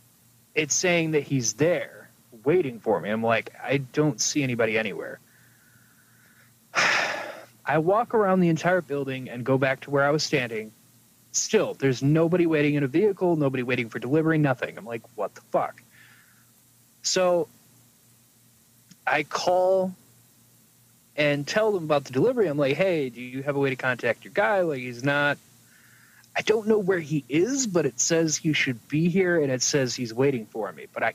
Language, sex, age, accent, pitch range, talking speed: English, male, 30-49, American, 120-160 Hz, 175 wpm